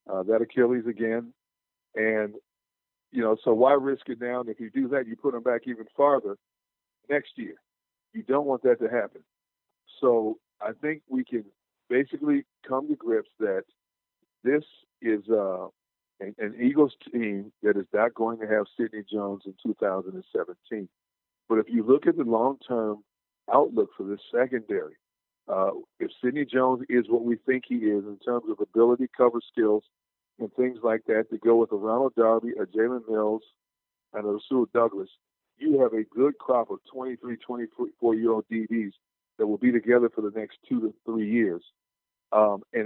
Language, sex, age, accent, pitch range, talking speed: English, male, 50-69, American, 110-130 Hz, 170 wpm